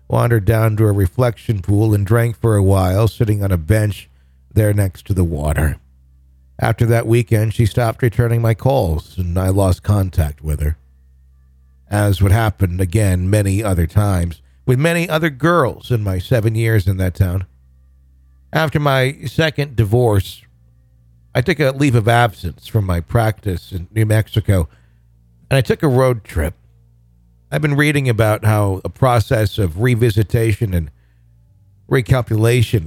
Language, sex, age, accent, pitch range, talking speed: English, male, 50-69, American, 95-115 Hz, 155 wpm